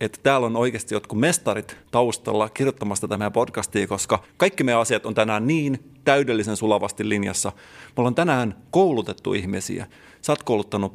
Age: 30-49